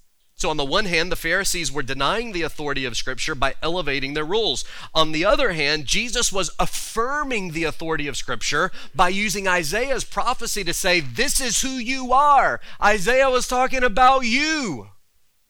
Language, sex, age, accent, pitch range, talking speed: English, male, 30-49, American, 160-250 Hz, 170 wpm